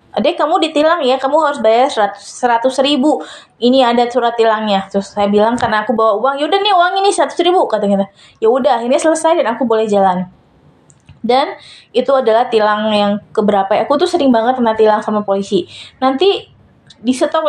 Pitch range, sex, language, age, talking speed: 220-270 Hz, female, English, 20-39, 180 wpm